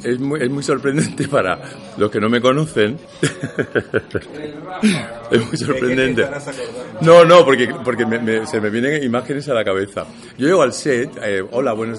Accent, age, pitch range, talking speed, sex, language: Spanish, 60-79, 110-150 Hz, 170 wpm, male, Spanish